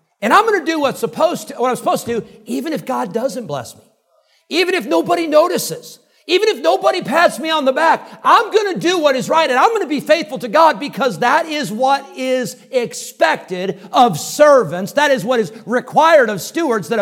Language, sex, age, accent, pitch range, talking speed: English, male, 50-69, American, 175-265 Hz, 220 wpm